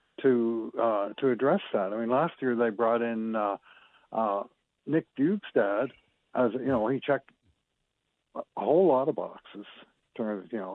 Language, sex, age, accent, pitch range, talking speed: English, male, 60-79, American, 110-130 Hz, 180 wpm